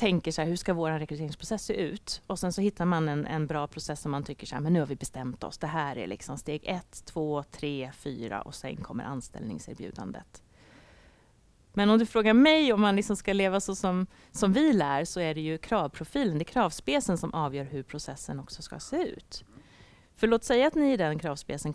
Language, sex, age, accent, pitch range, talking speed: Swedish, female, 30-49, native, 145-200 Hz, 220 wpm